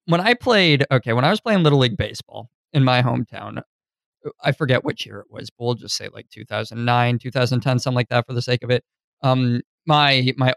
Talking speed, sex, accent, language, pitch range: 245 wpm, male, American, English, 125-150 Hz